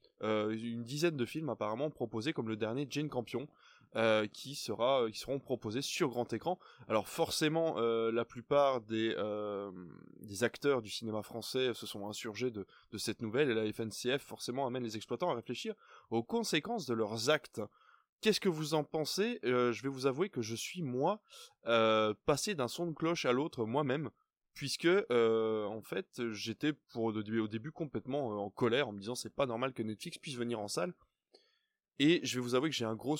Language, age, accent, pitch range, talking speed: French, 20-39, French, 110-150 Hz, 195 wpm